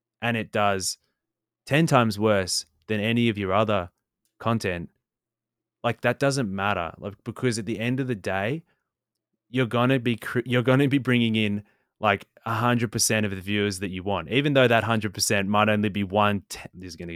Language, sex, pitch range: English, male, 100-120 Hz